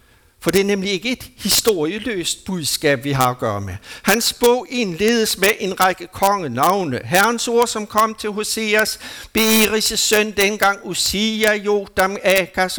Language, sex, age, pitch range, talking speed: Danish, male, 60-79, 160-220 Hz, 150 wpm